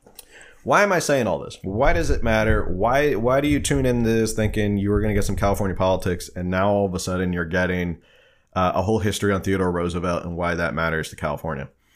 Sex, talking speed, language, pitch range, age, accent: male, 235 wpm, English, 95-110 Hz, 30-49, American